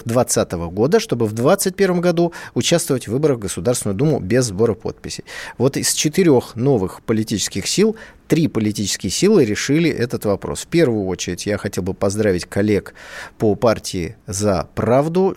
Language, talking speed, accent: Russian, 150 wpm, native